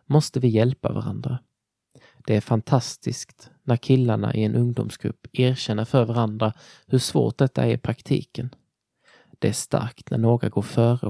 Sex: male